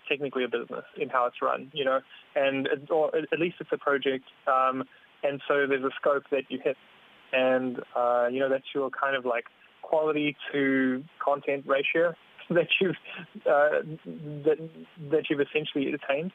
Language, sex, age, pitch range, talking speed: English, male, 20-39, 130-150 Hz, 170 wpm